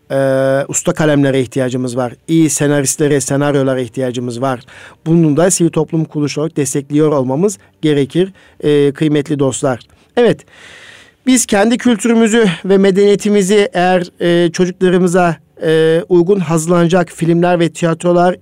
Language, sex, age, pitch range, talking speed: Turkish, male, 50-69, 145-190 Hz, 115 wpm